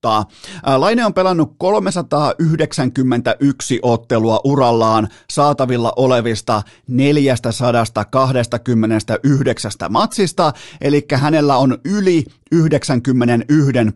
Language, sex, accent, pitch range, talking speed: Finnish, male, native, 115-145 Hz, 65 wpm